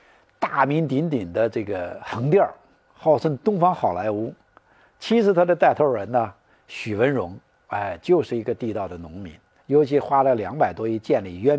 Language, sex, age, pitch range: Chinese, male, 60-79, 115-165 Hz